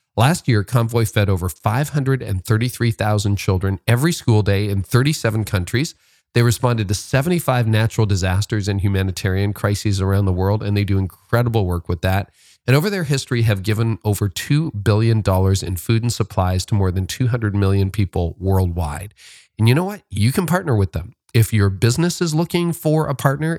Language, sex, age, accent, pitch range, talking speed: English, male, 40-59, American, 95-125 Hz, 175 wpm